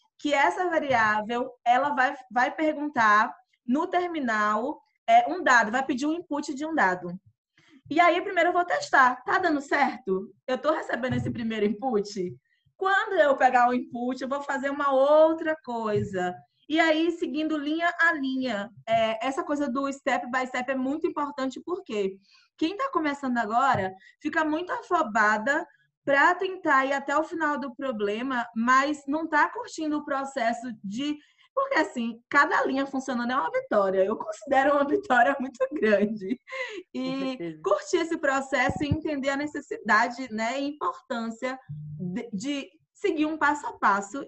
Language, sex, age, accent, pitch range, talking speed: Portuguese, female, 20-39, Brazilian, 235-315 Hz, 155 wpm